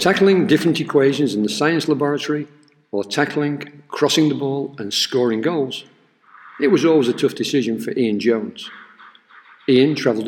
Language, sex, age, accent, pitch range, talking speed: English, male, 50-69, British, 115-145 Hz, 150 wpm